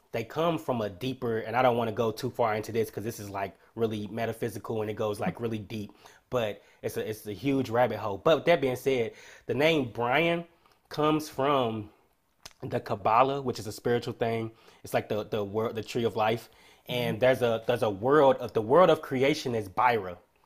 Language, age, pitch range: English, 20-39, 110-130 Hz